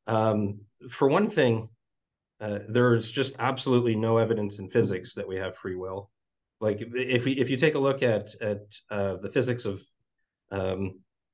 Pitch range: 105-125 Hz